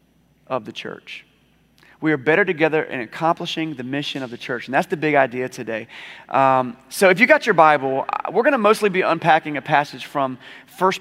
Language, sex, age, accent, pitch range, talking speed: English, male, 30-49, American, 140-185 Hz, 200 wpm